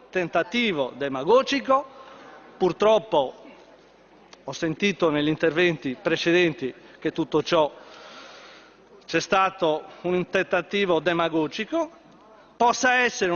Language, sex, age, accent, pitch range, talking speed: Italian, male, 40-59, native, 170-230 Hz, 80 wpm